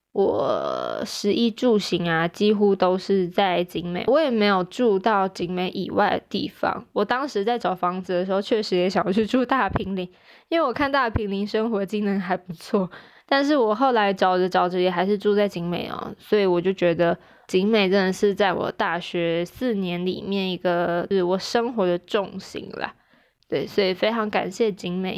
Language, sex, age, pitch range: Chinese, female, 20-39, 180-210 Hz